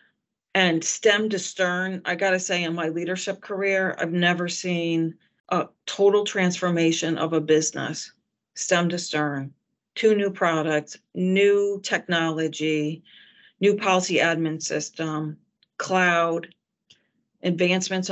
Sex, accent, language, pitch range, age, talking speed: female, American, English, 160-185 Hz, 40-59, 115 wpm